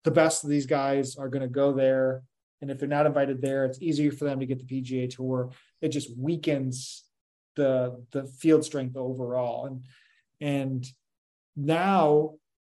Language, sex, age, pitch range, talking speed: English, male, 20-39, 130-155 Hz, 170 wpm